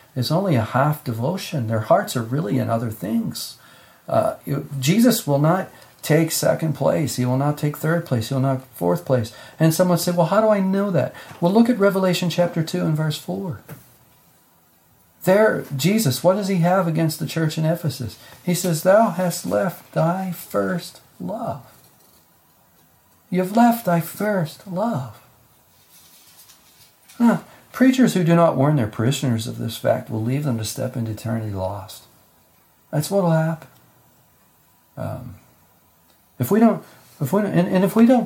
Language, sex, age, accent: English, male, 40-59, American